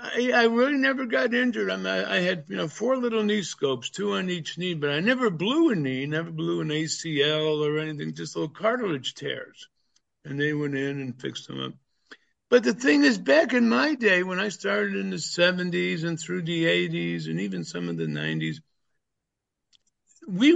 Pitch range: 150-225 Hz